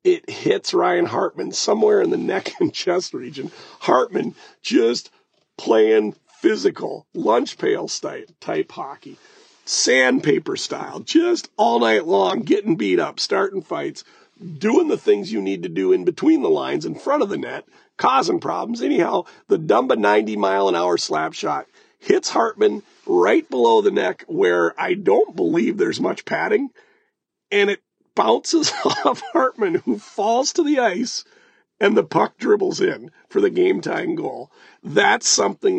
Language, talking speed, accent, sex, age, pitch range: English, 155 wpm, American, male, 40-59, 320-405 Hz